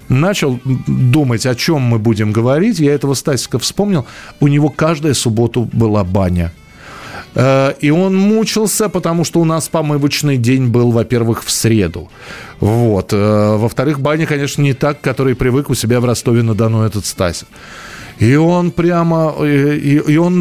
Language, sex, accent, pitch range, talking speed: Russian, male, native, 115-150 Hz, 145 wpm